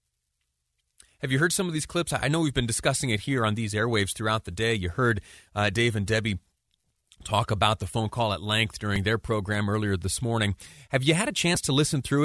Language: English